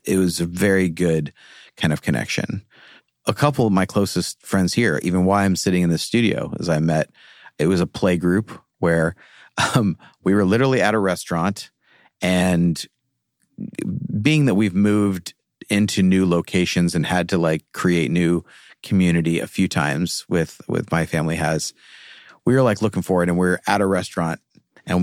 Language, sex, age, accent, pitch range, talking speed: English, male, 30-49, American, 85-100 Hz, 175 wpm